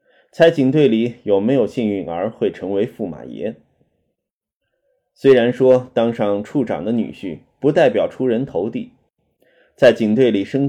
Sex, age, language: male, 20-39, Chinese